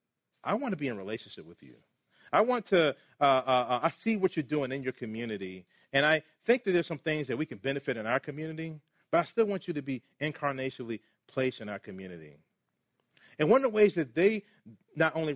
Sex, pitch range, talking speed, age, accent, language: male, 125-165 Hz, 225 wpm, 40-59, American, English